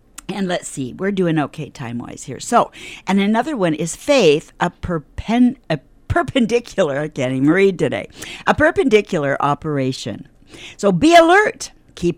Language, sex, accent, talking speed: English, female, American, 145 wpm